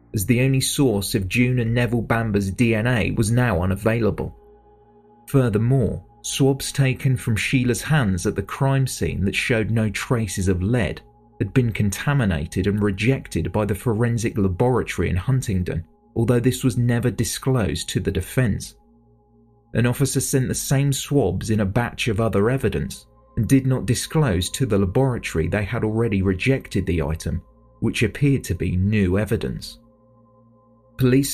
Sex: male